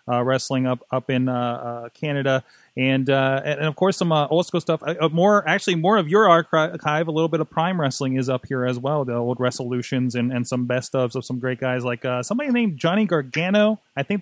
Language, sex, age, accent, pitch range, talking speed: English, male, 30-49, American, 130-165 Hz, 235 wpm